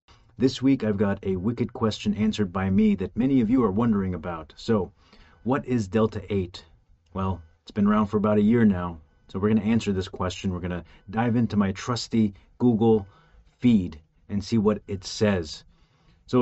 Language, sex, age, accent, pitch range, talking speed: English, male, 30-49, American, 85-110 Hz, 190 wpm